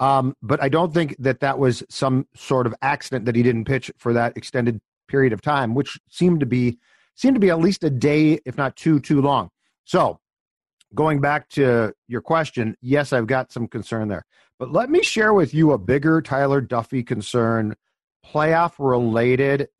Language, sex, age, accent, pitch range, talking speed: English, male, 40-59, American, 120-160 Hz, 190 wpm